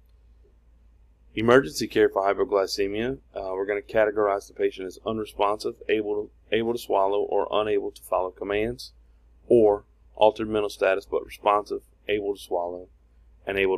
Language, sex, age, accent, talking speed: English, male, 30-49, American, 145 wpm